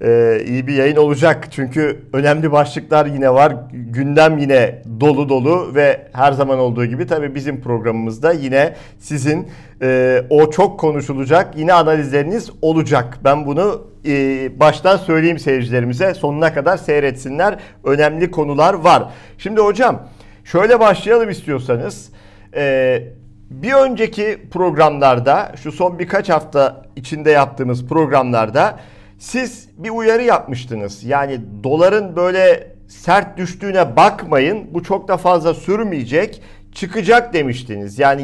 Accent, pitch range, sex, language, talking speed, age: native, 135-195 Hz, male, Turkish, 120 wpm, 50-69